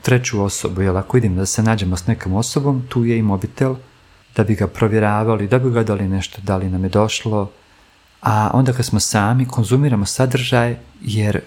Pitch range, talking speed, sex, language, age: 100-120 Hz, 185 wpm, male, Croatian, 40-59